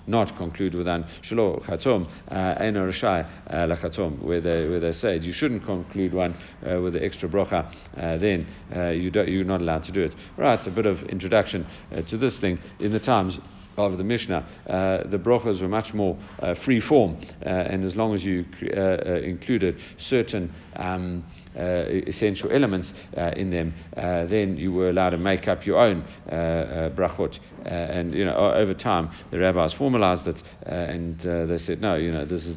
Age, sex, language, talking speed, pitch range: 60-79, male, English, 190 wpm, 85-95 Hz